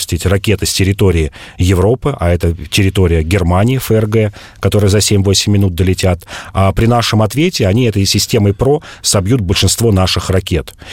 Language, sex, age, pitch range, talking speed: Russian, male, 40-59, 95-115 Hz, 145 wpm